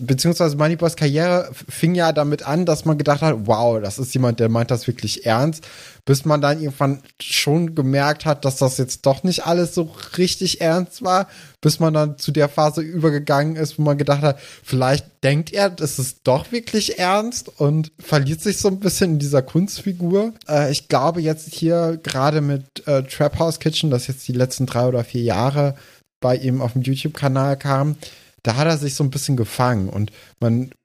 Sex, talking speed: male, 195 wpm